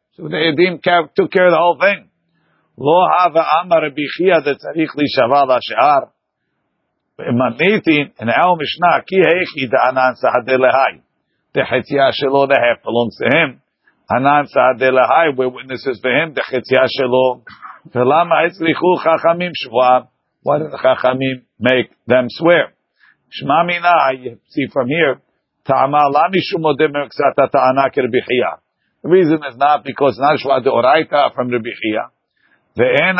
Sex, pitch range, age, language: male, 130-165 Hz, 50-69, English